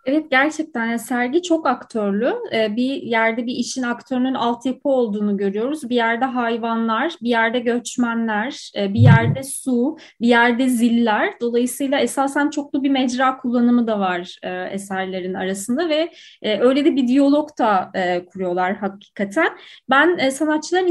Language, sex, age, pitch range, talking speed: Turkish, female, 20-39, 225-280 Hz, 130 wpm